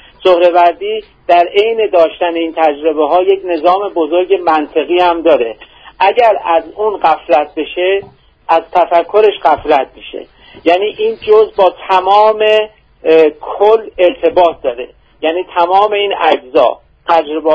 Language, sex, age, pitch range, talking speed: Persian, male, 50-69, 155-195 Hz, 120 wpm